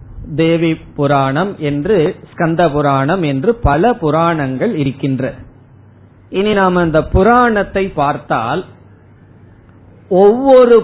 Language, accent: Tamil, native